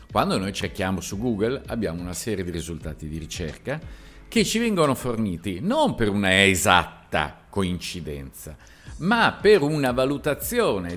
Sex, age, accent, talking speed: male, 50-69, native, 135 wpm